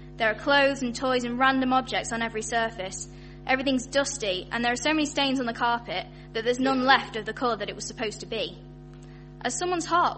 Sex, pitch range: female, 220-275 Hz